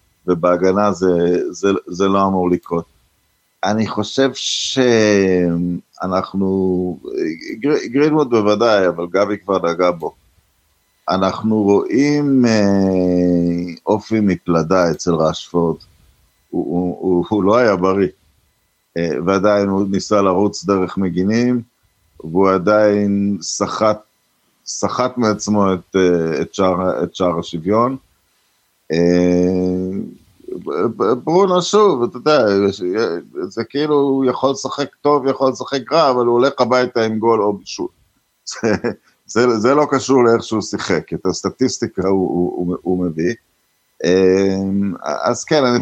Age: 50-69